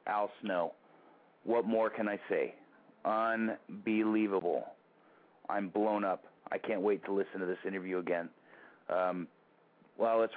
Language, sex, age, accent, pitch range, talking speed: English, male, 30-49, American, 95-110 Hz, 135 wpm